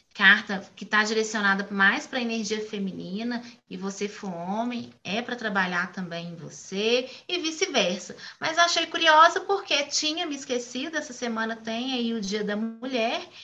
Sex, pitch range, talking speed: female, 220-280 Hz, 160 wpm